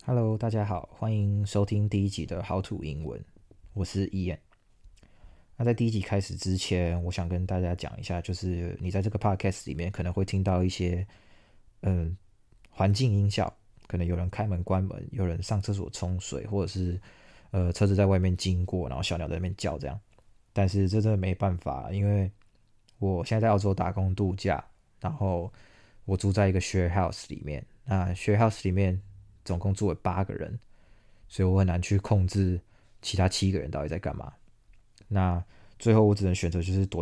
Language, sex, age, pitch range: Chinese, male, 20-39, 90-105 Hz